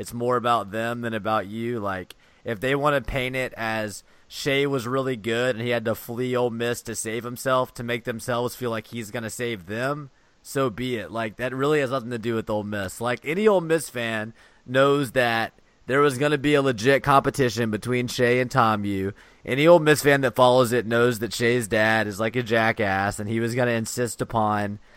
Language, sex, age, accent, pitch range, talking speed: English, male, 30-49, American, 110-130 Hz, 220 wpm